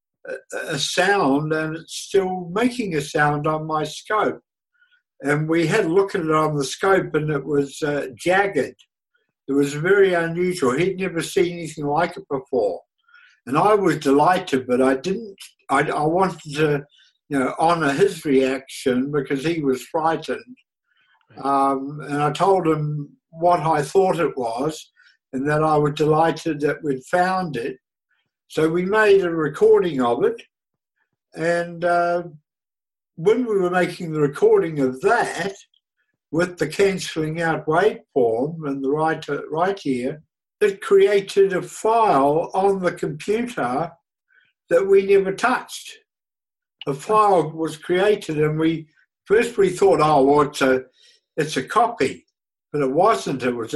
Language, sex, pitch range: English, male, 150-200 Hz